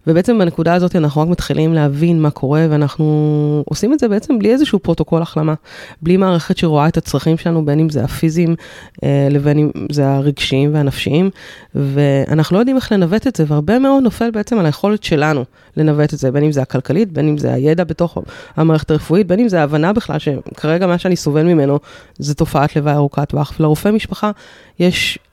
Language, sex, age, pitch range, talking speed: Hebrew, female, 20-39, 150-180 Hz, 185 wpm